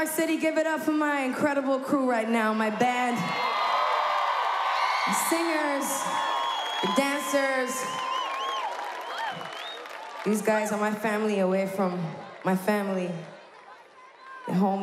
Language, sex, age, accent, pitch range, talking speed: English, female, 20-39, American, 200-290 Hz, 110 wpm